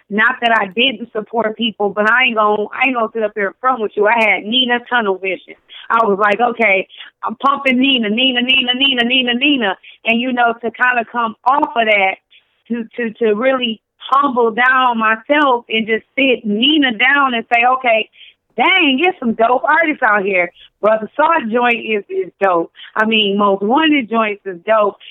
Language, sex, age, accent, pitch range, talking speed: English, female, 30-49, American, 215-255 Hz, 190 wpm